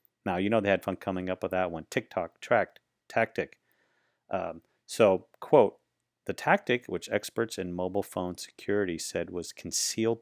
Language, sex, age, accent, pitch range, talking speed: English, male, 40-59, American, 90-105 Hz, 165 wpm